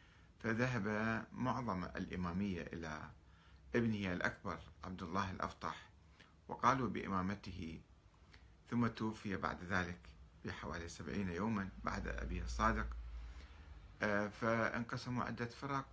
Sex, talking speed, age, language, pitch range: male, 90 wpm, 50-69, Arabic, 85-105 Hz